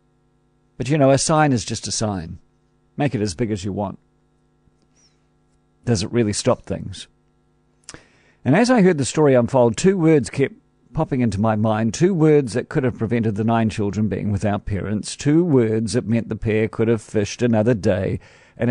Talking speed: 190 wpm